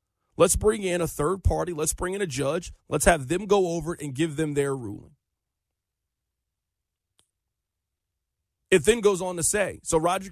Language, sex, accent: English, male, American